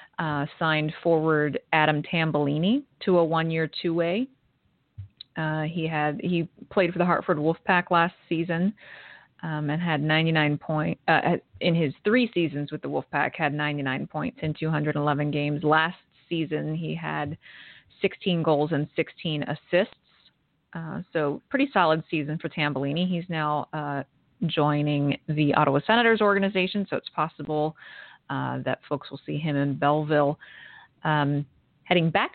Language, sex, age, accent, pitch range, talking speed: English, female, 30-49, American, 150-175 Hz, 140 wpm